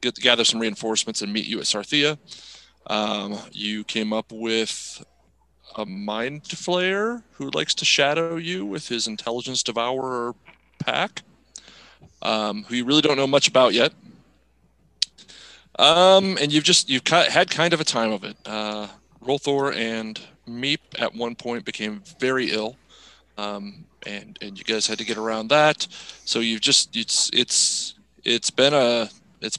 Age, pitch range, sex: 30-49, 110-135 Hz, male